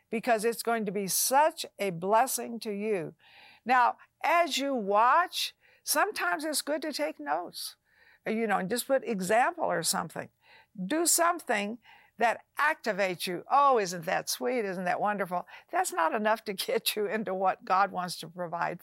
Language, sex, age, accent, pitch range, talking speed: English, female, 60-79, American, 195-290 Hz, 165 wpm